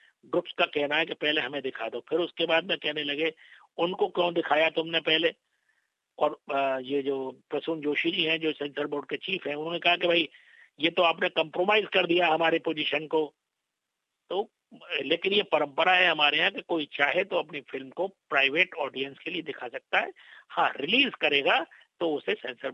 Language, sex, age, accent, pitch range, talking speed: Hindi, male, 50-69, native, 155-215 Hz, 190 wpm